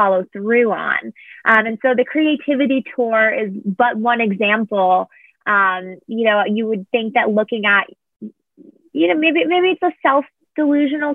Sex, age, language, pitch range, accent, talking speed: female, 20-39, English, 215-290 Hz, American, 155 wpm